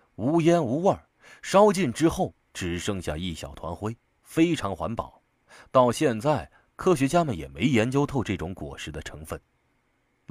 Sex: male